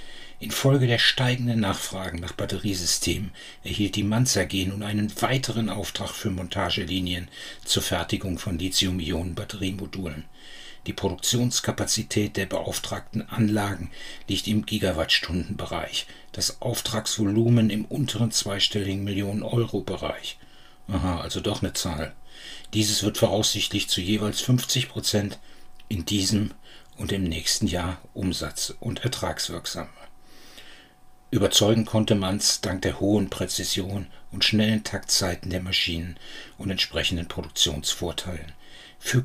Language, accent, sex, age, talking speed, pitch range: German, German, male, 60-79, 105 wpm, 90-105 Hz